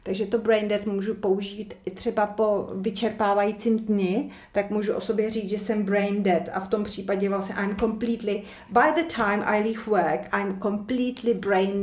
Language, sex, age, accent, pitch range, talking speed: Czech, female, 40-59, native, 190-220 Hz, 185 wpm